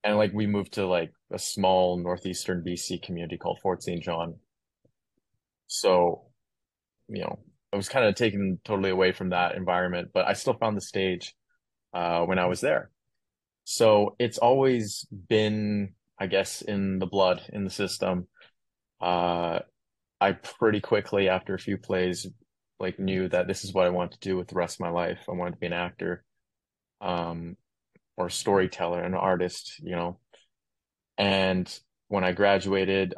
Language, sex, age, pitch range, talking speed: English, male, 20-39, 90-100 Hz, 165 wpm